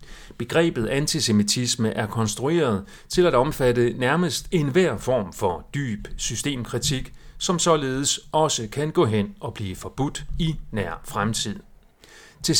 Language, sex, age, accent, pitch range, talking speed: Danish, male, 40-59, native, 105-150 Hz, 125 wpm